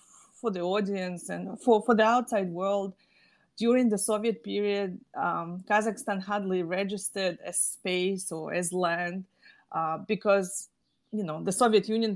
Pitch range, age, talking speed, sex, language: 180-210 Hz, 30-49, 145 wpm, female, English